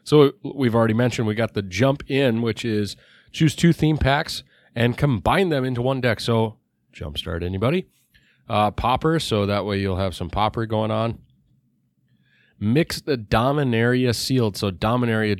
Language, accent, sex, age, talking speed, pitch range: English, American, male, 30-49, 160 wpm, 100-125 Hz